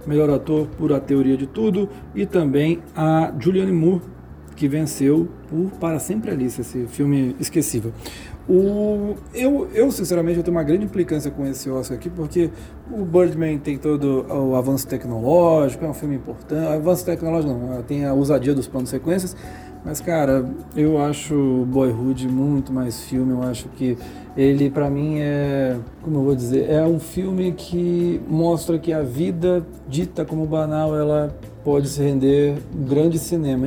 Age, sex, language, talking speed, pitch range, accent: 40-59, male, Portuguese, 160 wpm, 135-170 Hz, Brazilian